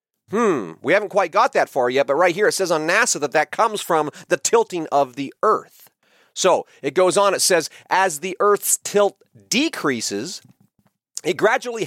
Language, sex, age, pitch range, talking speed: English, male, 40-59, 145-190 Hz, 185 wpm